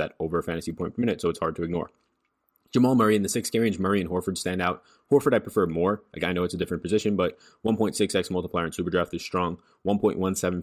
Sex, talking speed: male, 245 wpm